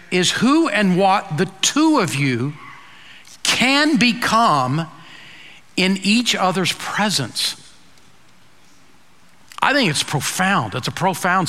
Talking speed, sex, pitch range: 110 wpm, male, 185-245 Hz